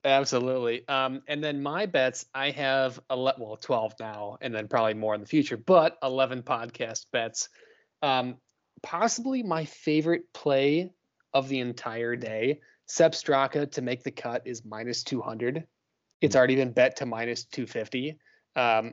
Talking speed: 150 wpm